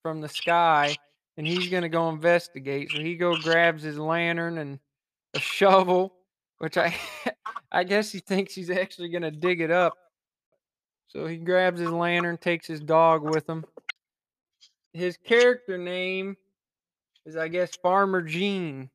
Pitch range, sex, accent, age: 160-185 Hz, male, American, 20-39